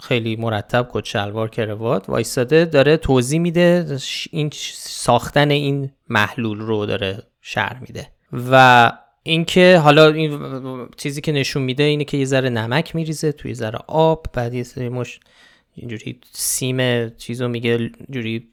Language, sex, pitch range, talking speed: Persian, male, 115-150 Hz, 135 wpm